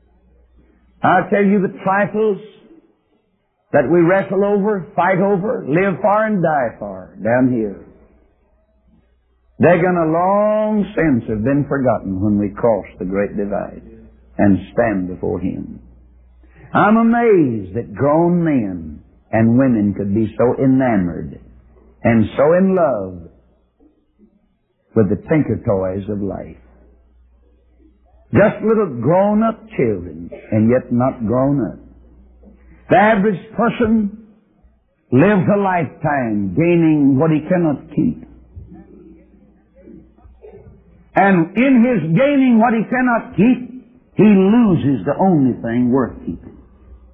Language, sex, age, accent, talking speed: English, male, 60-79, American, 115 wpm